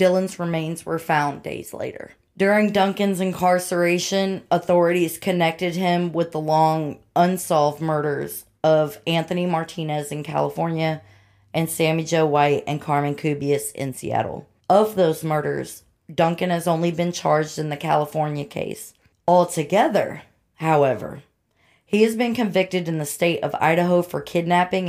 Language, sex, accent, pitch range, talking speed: English, female, American, 150-180 Hz, 135 wpm